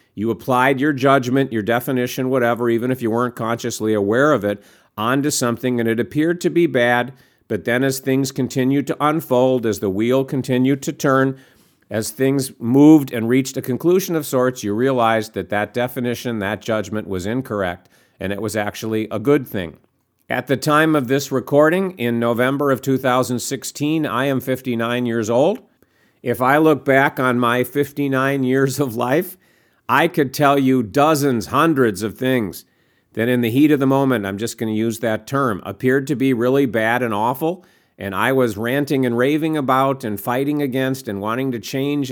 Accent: American